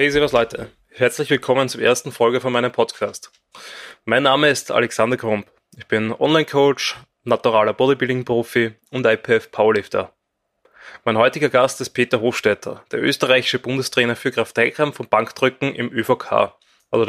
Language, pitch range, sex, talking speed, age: German, 115-130 Hz, male, 145 wpm, 20-39